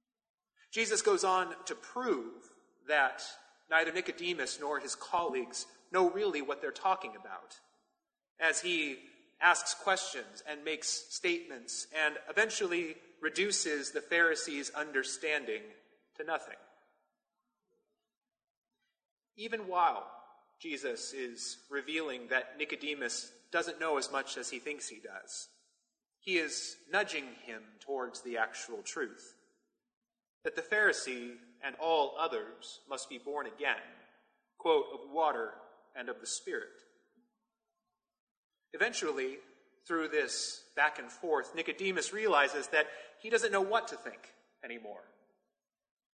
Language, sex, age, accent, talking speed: English, male, 30-49, American, 115 wpm